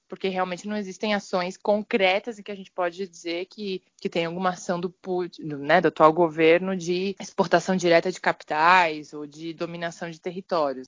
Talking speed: 175 wpm